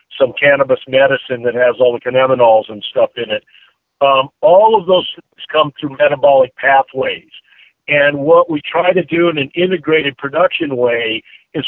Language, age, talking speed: English, 50-69, 170 wpm